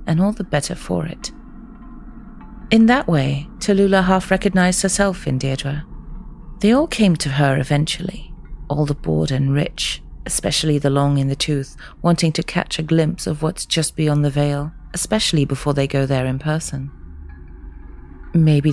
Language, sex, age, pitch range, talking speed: English, female, 40-59, 125-165 Hz, 165 wpm